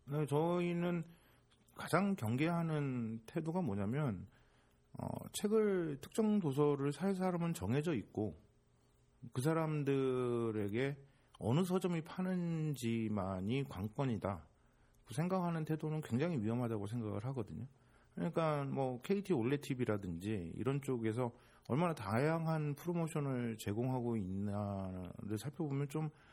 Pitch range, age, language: 115-160 Hz, 50-69, Korean